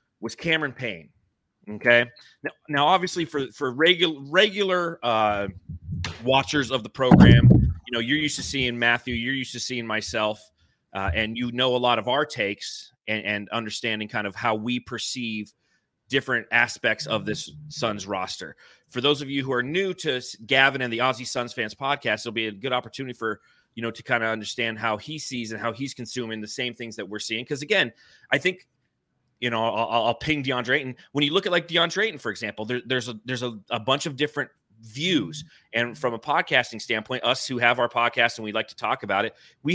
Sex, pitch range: male, 110-135 Hz